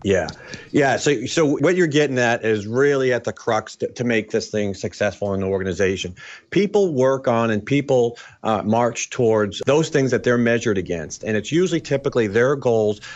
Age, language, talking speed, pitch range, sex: 40-59, English, 190 wpm, 105-130 Hz, male